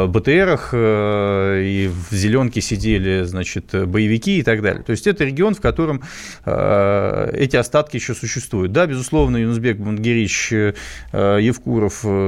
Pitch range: 105-130 Hz